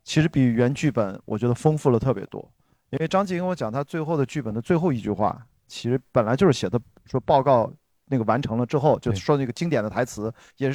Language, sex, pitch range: Chinese, male, 120-155 Hz